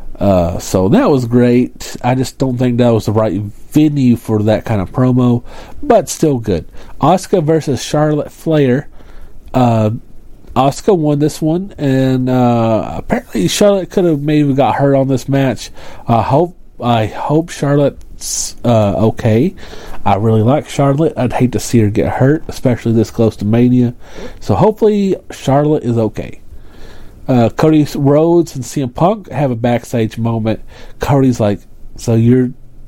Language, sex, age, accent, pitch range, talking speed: English, male, 40-59, American, 110-150 Hz, 155 wpm